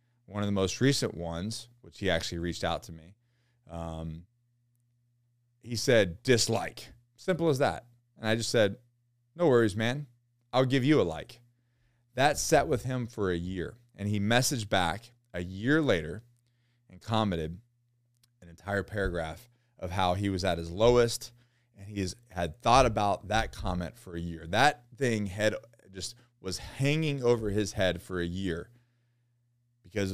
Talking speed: 160 wpm